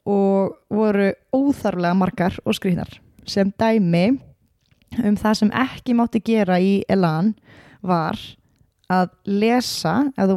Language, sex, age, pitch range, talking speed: English, female, 20-39, 200-240 Hz, 120 wpm